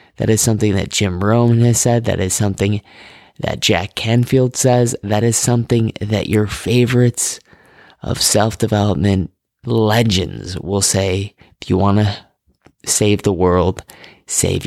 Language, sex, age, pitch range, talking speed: English, male, 20-39, 95-115 Hz, 140 wpm